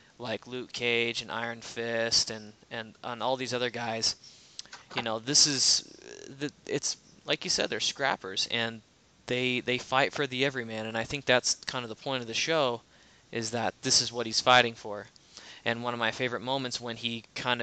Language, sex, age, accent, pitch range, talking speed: English, male, 20-39, American, 115-130 Hz, 200 wpm